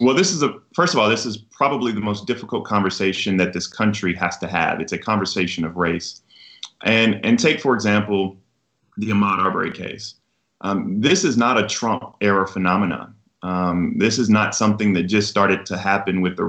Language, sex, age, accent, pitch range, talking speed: English, male, 20-39, American, 95-125 Hz, 195 wpm